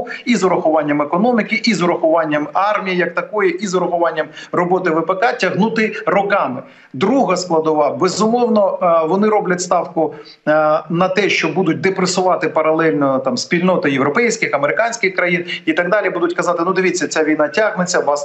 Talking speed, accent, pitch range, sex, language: 150 wpm, native, 160-200 Hz, male, Ukrainian